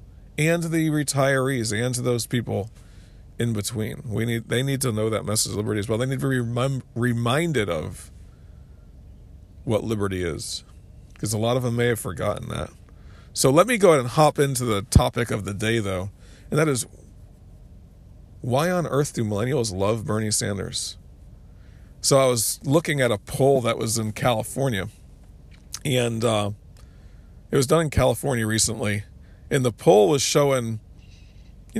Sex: male